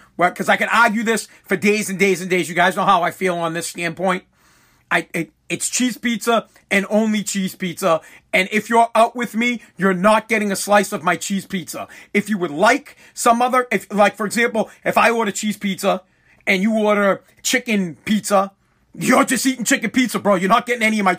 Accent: American